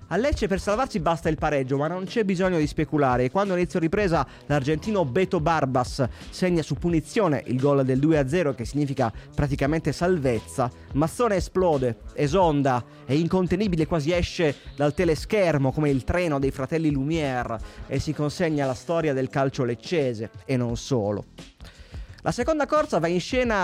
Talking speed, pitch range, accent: 160 wpm, 135-185 Hz, native